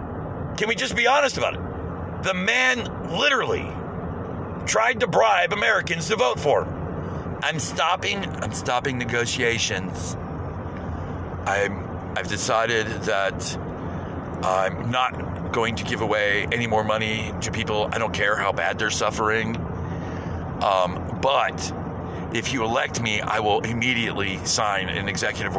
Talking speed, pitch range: 130 wpm, 90-125 Hz